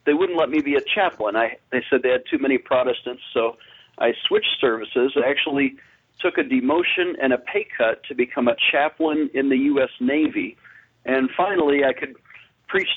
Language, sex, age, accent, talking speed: English, male, 50-69, American, 190 wpm